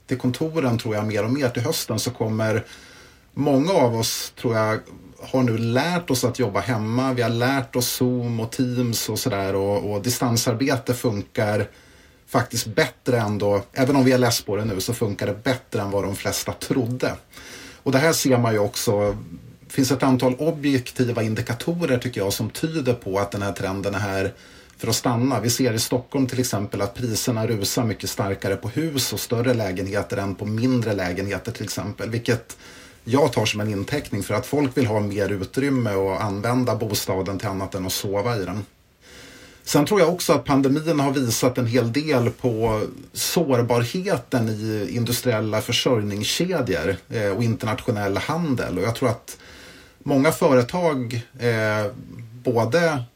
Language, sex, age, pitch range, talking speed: Swedish, male, 30-49, 105-130 Hz, 175 wpm